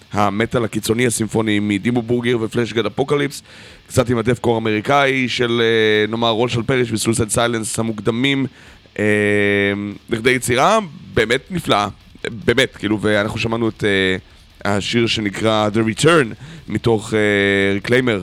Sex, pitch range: male, 100-125 Hz